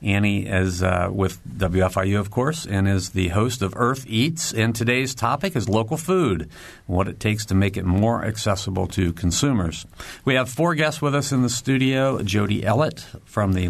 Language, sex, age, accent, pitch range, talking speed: English, male, 50-69, American, 95-120 Hz, 195 wpm